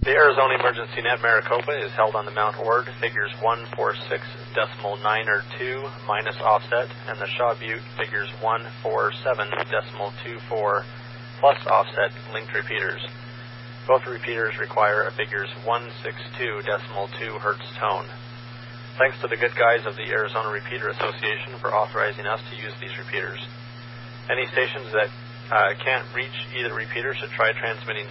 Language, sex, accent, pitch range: English, male, American, 115-120 Hz